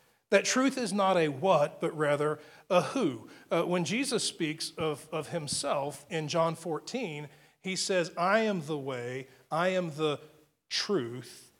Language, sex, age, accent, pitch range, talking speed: English, male, 40-59, American, 155-205 Hz, 155 wpm